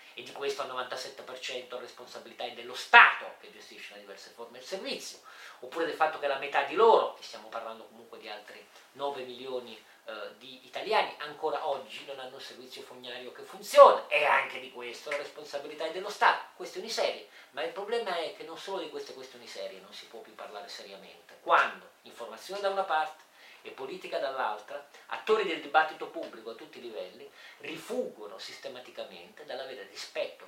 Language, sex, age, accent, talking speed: Italian, male, 40-59, native, 185 wpm